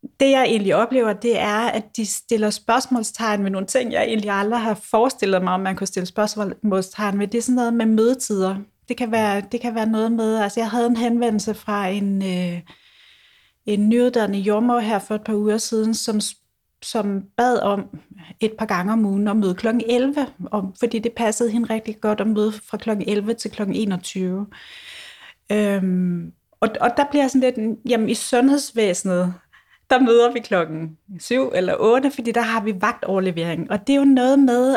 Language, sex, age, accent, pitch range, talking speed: Danish, female, 30-49, native, 200-240 Hz, 195 wpm